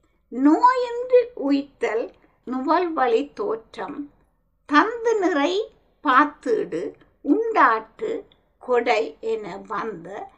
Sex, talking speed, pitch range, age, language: female, 70 wpm, 230-375 Hz, 60-79, Tamil